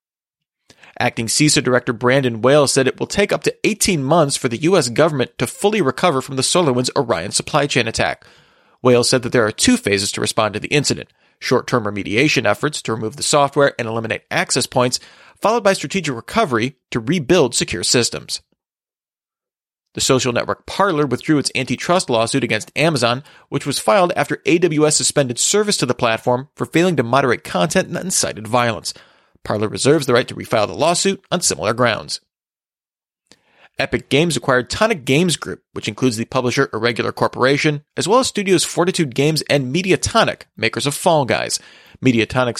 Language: English